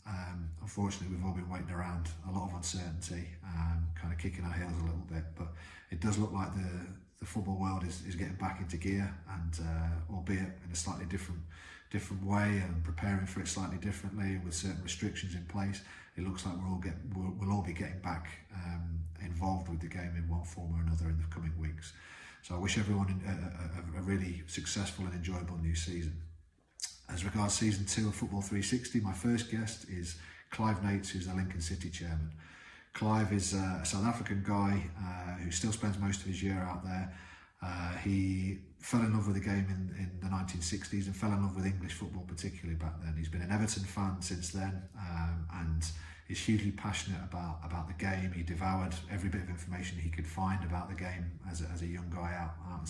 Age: 40-59